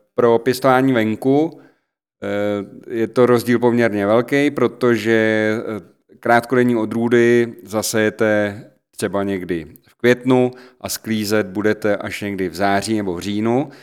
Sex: male